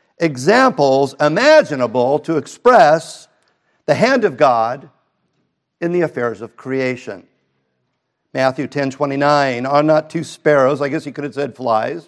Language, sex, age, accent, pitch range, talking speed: English, male, 50-69, American, 130-175 Hz, 135 wpm